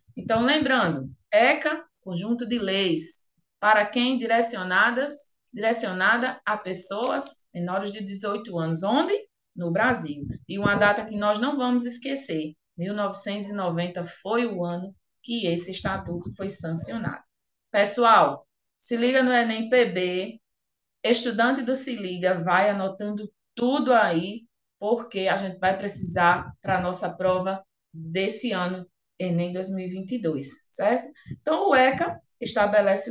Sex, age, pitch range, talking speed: female, 20-39, 175-235 Hz, 120 wpm